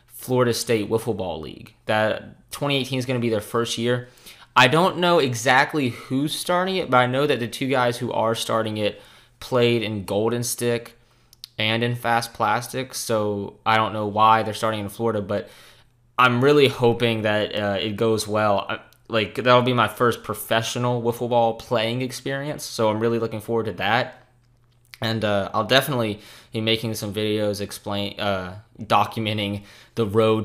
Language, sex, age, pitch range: English, male, 20-39, 105-120 Hz